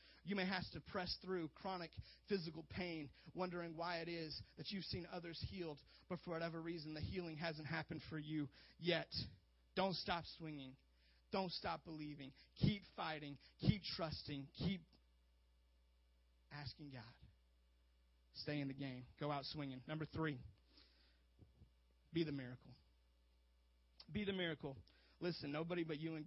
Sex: male